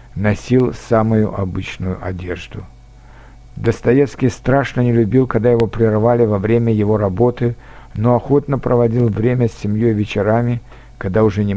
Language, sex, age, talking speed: Russian, male, 60-79, 130 wpm